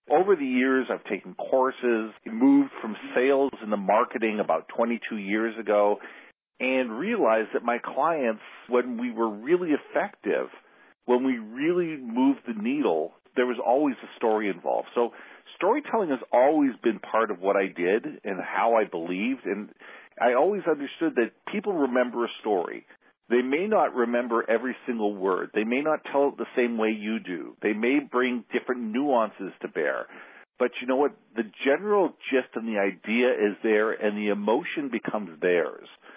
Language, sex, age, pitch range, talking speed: English, male, 50-69, 110-165 Hz, 170 wpm